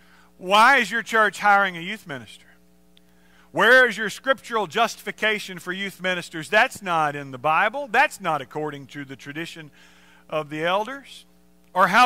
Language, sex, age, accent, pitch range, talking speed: English, male, 50-69, American, 170-245 Hz, 160 wpm